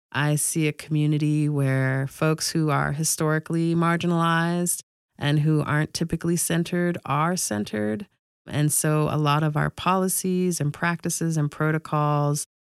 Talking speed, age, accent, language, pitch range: 135 wpm, 30-49, American, English, 135-165 Hz